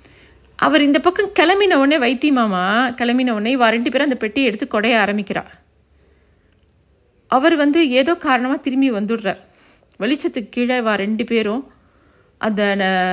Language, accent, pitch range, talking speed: Tamil, native, 220-330 Hz, 130 wpm